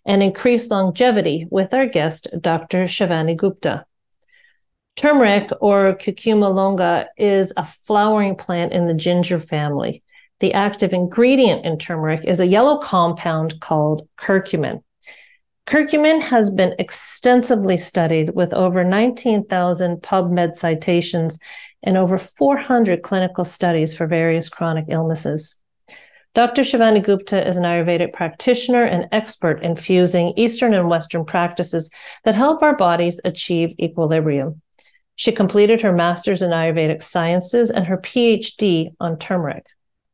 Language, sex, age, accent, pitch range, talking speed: English, female, 40-59, American, 170-215 Hz, 125 wpm